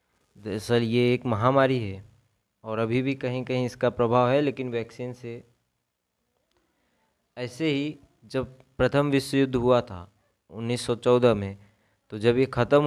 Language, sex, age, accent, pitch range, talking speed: Hindi, male, 20-39, native, 105-125 Hz, 140 wpm